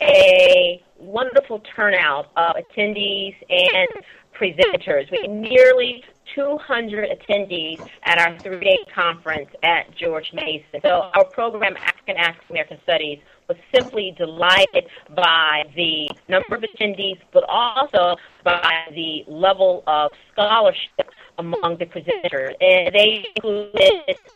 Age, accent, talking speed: 40-59, American, 120 wpm